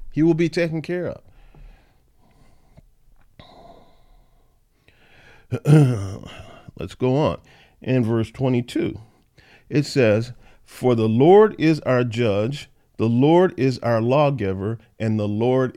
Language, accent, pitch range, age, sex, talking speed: English, American, 100-140 Hz, 50-69, male, 105 wpm